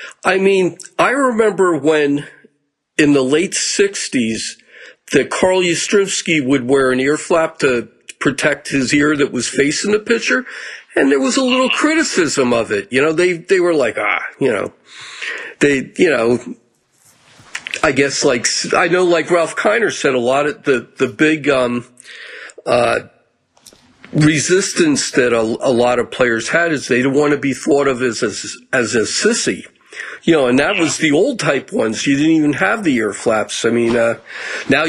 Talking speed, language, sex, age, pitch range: 180 wpm, English, male, 50-69, 120-170 Hz